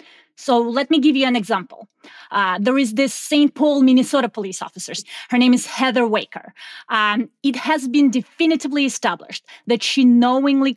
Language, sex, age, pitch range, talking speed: English, female, 30-49, 215-265 Hz, 165 wpm